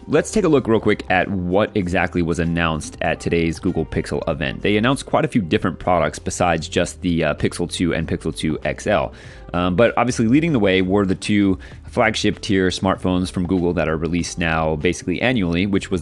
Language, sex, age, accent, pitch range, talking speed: English, male, 30-49, American, 85-100 Hz, 205 wpm